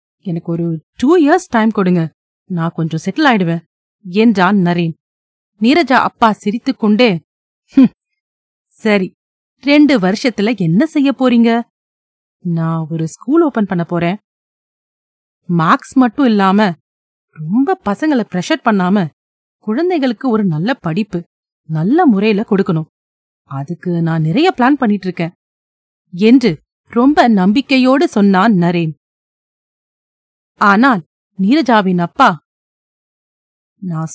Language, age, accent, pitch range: Tamil, 30-49, native, 175-255 Hz